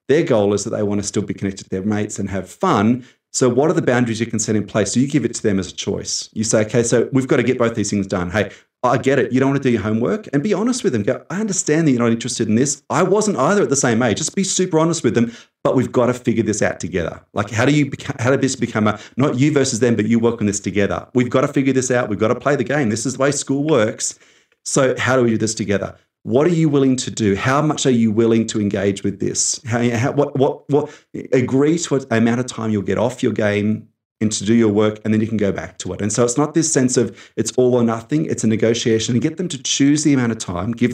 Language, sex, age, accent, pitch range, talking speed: English, male, 30-49, Australian, 110-135 Hz, 300 wpm